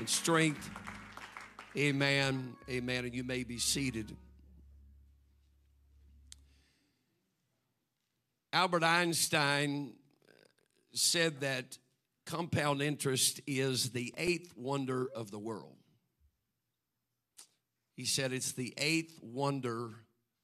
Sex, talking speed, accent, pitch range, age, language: male, 80 wpm, American, 120-145 Hz, 50-69, English